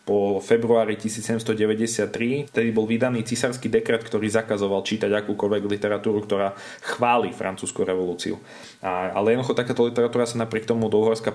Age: 20-39